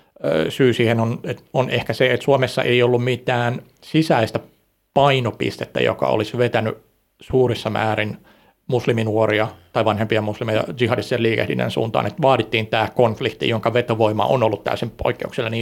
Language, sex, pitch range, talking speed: Finnish, male, 110-130 Hz, 140 wpm